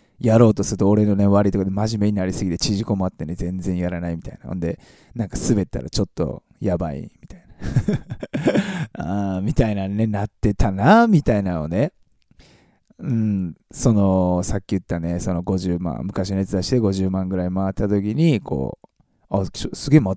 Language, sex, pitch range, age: Japanese, male, 95-135 Hz, 20-39